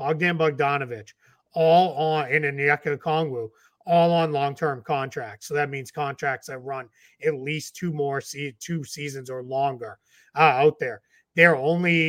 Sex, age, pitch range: male, 30-49, 140-165 Hz